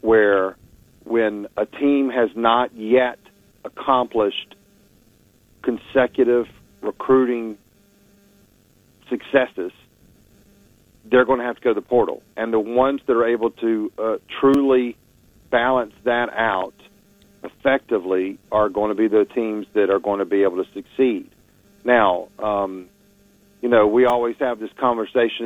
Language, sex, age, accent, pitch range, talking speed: English, male, 50-69, American, 105-135 Hz, 130 wpm